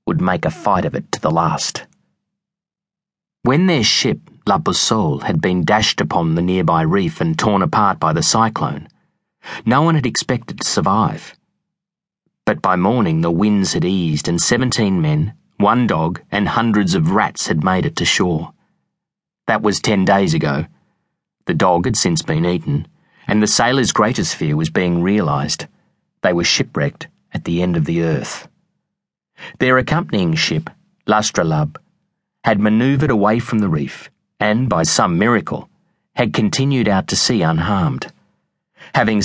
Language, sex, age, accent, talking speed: English, male, 30-49, Australian, 155 wpm